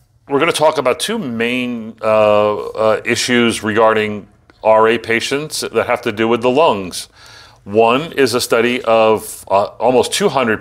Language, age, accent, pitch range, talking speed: English, 40-59, American, 110-130 Hz, 160 wpm